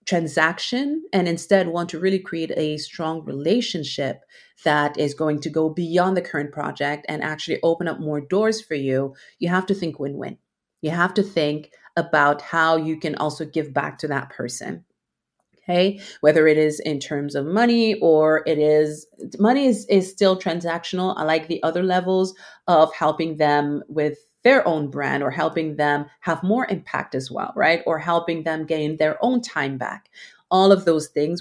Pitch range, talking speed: 150-180 Hz, 180 wpm